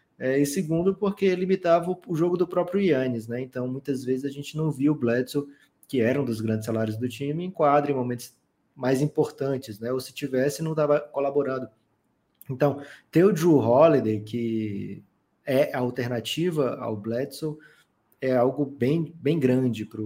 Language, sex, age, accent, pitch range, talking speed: Portuguese, male, 20-39, Brazilian, 115-135 Hz, 170 wpm